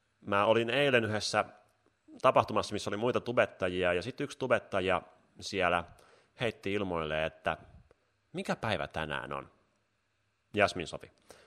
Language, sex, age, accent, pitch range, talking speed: Finnish, male, 30-49, native, 90-130 Hz, 120 wpm